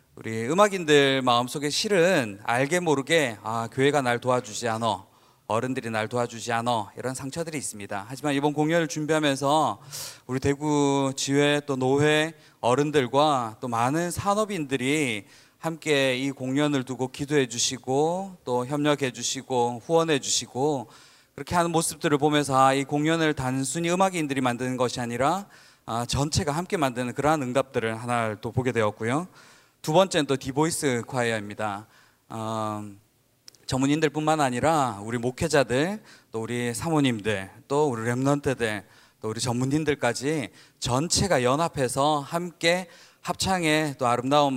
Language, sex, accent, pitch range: Korean, male, native, 120-150 Hz